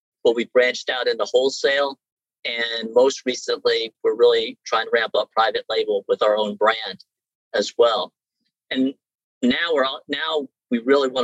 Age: 40-59